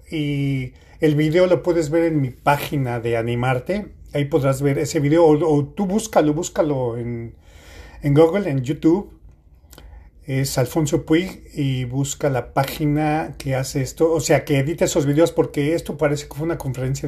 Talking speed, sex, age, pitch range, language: 170 wpm, male, 40-59, 120-150 Hz, Spanish